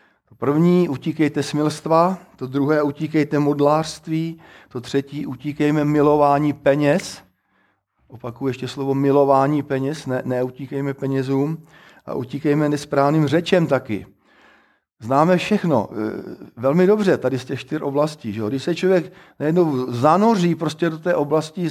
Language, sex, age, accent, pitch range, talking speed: Czech, male, 50-69, native, 135-160 Hz, 125 wpm